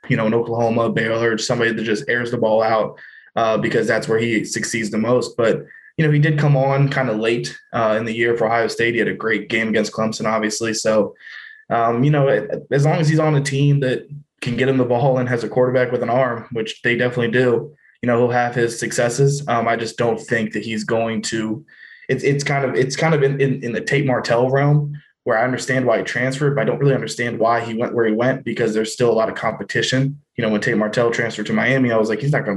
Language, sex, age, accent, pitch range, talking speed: English, male, 20-39, American, 110-130 Hz, 260 wpm